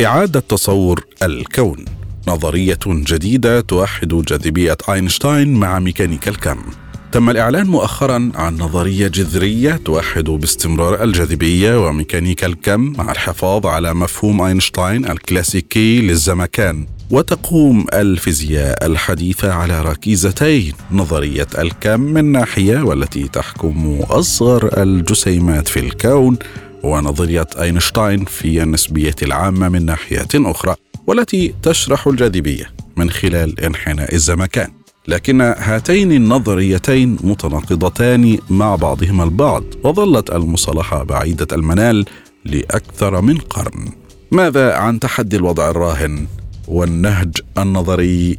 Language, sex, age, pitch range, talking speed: Arabic, male, 40-59, 85-110 Hz, 100 wpm